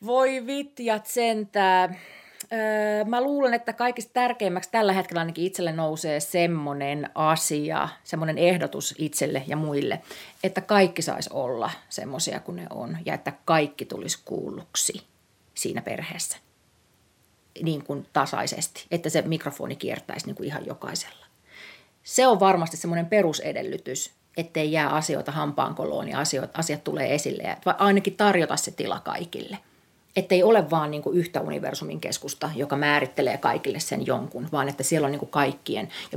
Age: 30-49